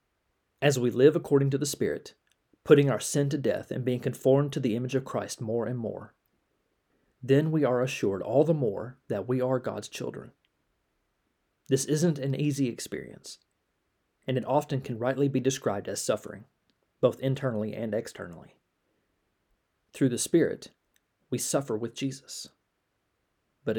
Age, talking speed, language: 40-59, 155 wpm, English